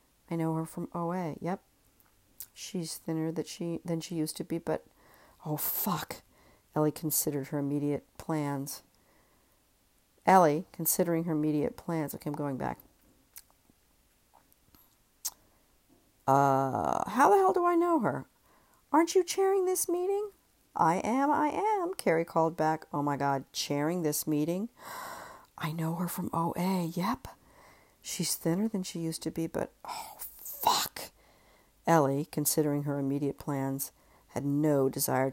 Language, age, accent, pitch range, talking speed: English, 50-69, American, 140-180 Hz, 140 wpm